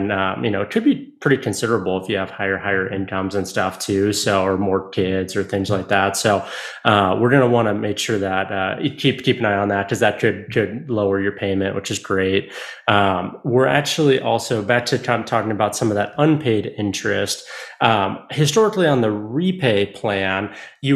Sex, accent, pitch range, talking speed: male, American, 100-130 Hz, 215 wpm